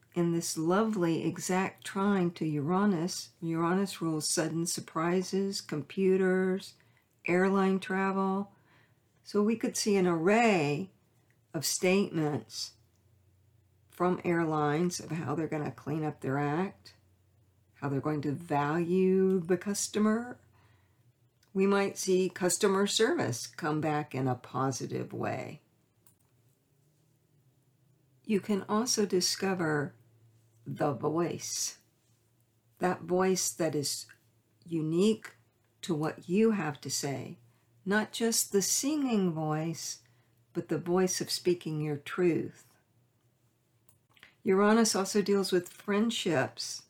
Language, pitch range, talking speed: English, 120-185 Hz, 105 wpm